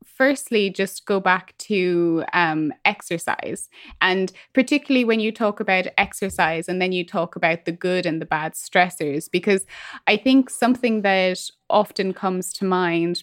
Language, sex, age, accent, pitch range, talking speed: English, female, 20-39, British, 175-215 Hz, 155 wpm